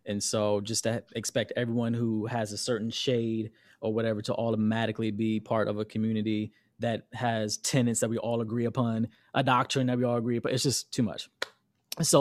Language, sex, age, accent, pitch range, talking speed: English, male, 20-39, American, 110-135 Hz, 195 wpm